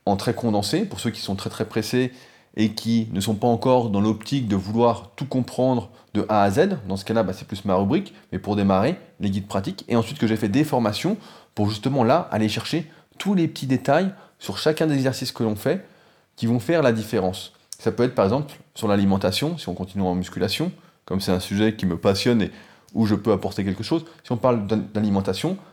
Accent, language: French, French